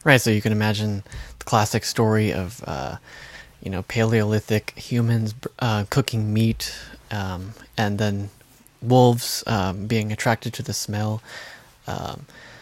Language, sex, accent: English, male, American